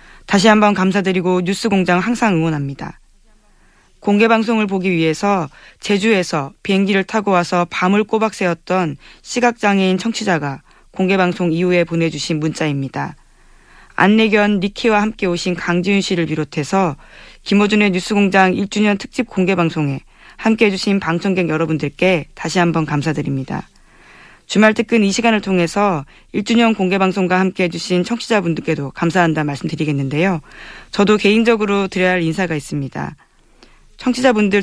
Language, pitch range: Korean, 165-205 Hz